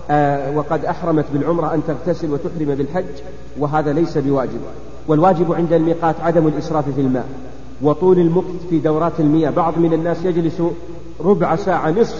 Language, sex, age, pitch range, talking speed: Arabic, male, 40-59, 150-180 Hz, 150 wpm